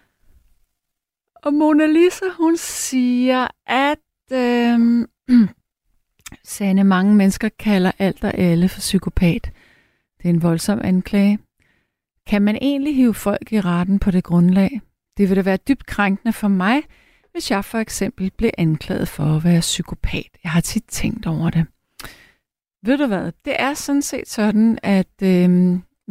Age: 30-49